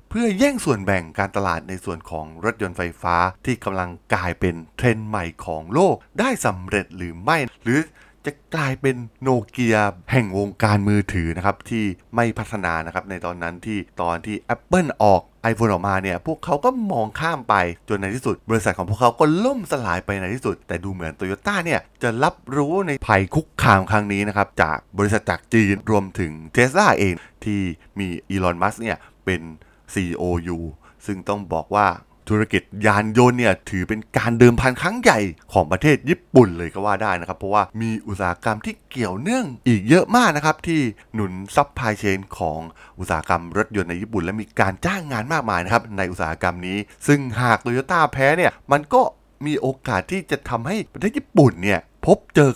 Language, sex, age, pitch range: Thai, male, 20-39, 90-125 Hz